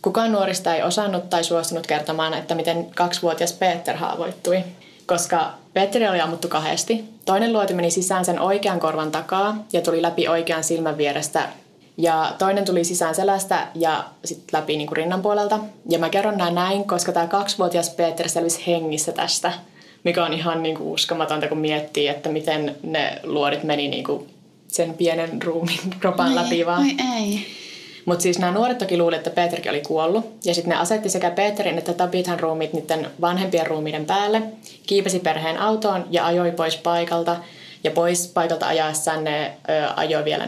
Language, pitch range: Finnish, 165-190 Hz